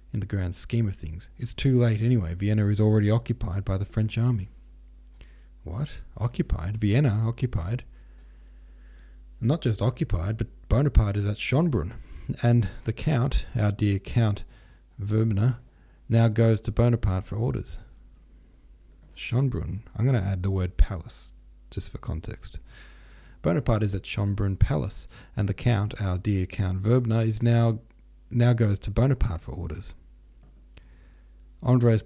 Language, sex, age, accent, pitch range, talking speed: English, male, 40-59, Australian, 90-115 Hz, 140 wpm